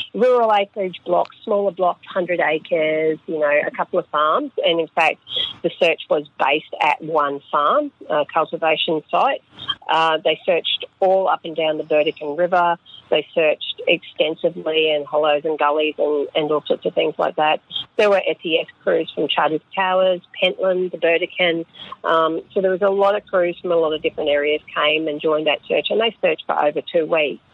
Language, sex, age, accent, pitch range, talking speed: English, female, 40-59, Australian, 155-190 Hz, 190 wpm